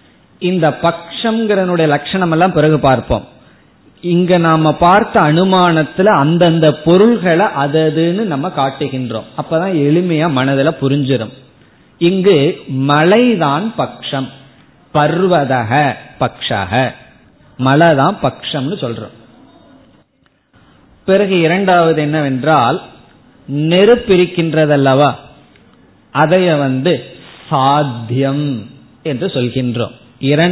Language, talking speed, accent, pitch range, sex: Tamil, 70 wpm, native, 135-175 Hz, male